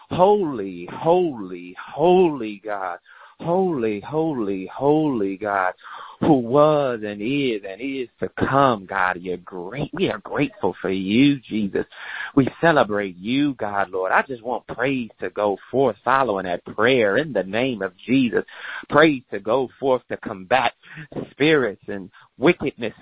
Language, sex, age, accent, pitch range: Japanese, male, 40-59, American, 110-145 Hz